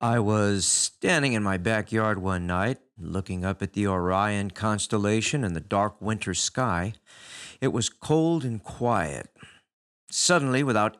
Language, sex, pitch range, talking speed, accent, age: English, male, 100-140 Hz, 140 wpm, American, 50-69